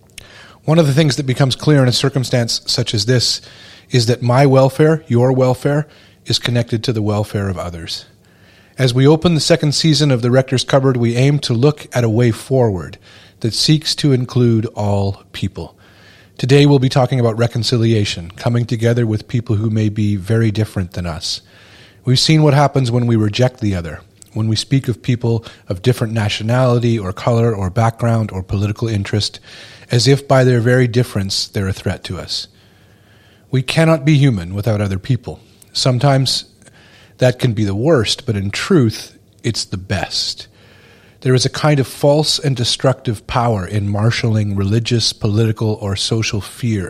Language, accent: English, American